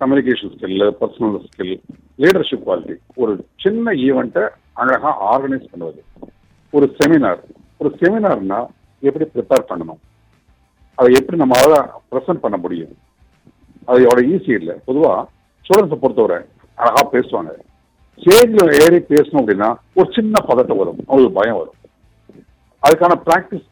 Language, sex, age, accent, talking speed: Tamil, male, 50-69, native, 40 wpm